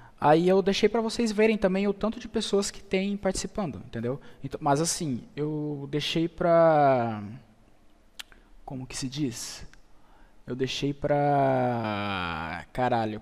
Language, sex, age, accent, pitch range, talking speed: Portuguese, male, 20-39, Brazilian, 120-155 Hz, 130 wpm